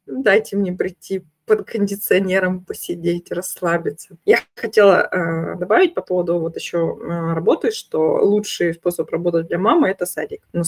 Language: Russian